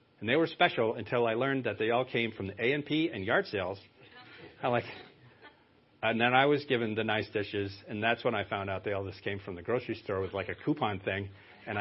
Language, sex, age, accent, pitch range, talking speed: English, male, 40-59, American, 115-160 Hz, 230 wpm